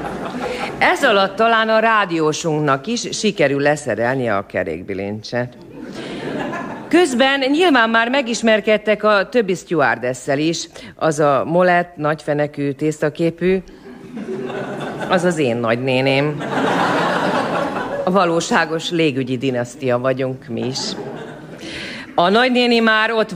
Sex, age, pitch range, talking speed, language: female, 40-59, 135-215 Hz, 100 wpm, Hungarian